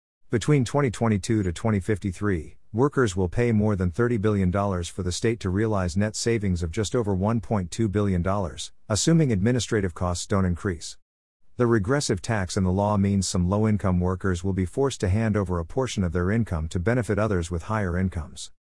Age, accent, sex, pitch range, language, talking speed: 50-69, American, male, 90-115 Hz, English, 175 wpm